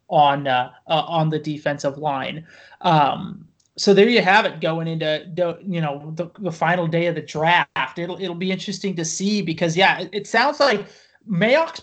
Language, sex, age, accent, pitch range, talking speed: English, male, 30-49, American, 175-215 Hz, 195 wpm